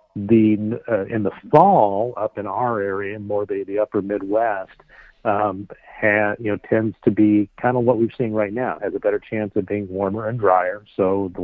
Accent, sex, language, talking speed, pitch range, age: American, male, English, 205 wpm, 105-115 Hz, 50-69